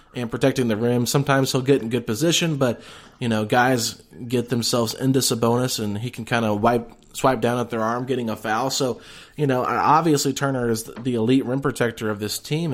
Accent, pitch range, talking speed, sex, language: American, 115-140 Hz, 210 wpm, male, English